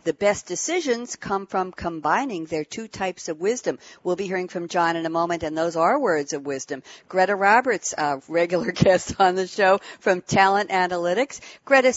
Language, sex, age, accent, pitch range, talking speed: English, female, 60-79, American, 170-215 Hz, 185 wpm